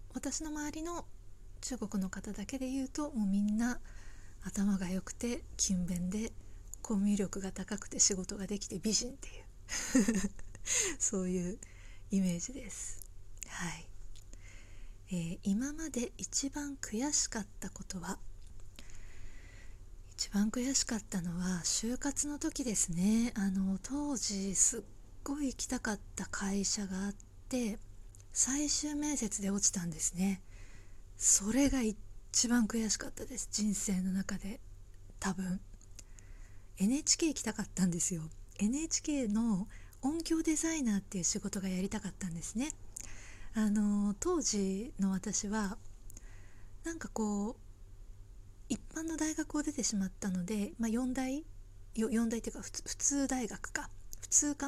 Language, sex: Japanese, female